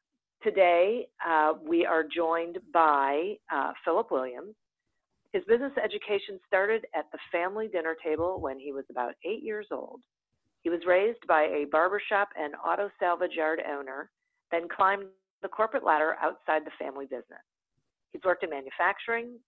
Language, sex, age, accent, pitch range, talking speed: English, female, 50-69, American, 155-205 Hz, 150 wpm